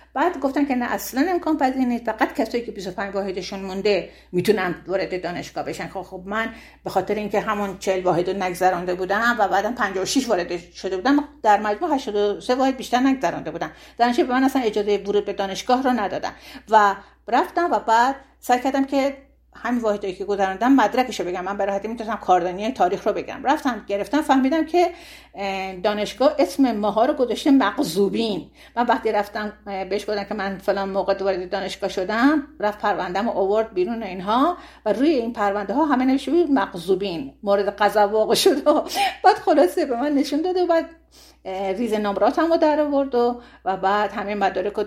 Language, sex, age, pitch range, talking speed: Persian, female, 50-69, 195-260 Hz, 175 wpm